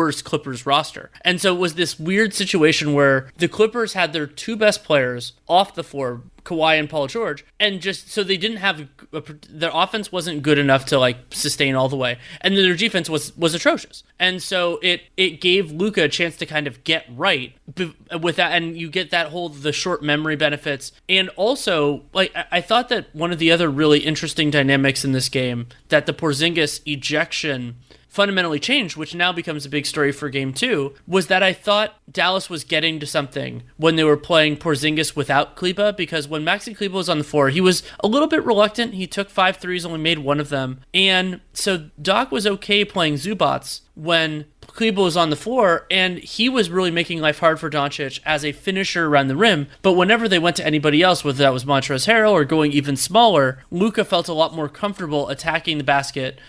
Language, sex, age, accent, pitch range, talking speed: English, male, 30-49, American, 145-185 Hz, 205 wpm